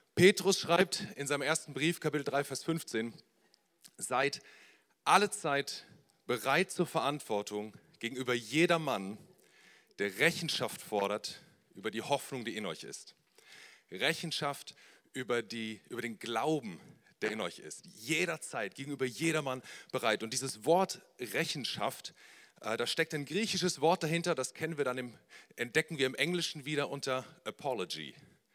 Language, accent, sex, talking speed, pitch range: German, German, male, 130 wpm, 115-160 Hz